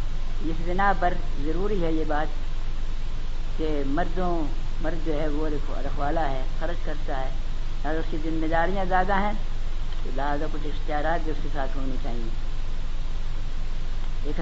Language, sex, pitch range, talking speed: Urdu, female, 150-190 Hz, 150 wpm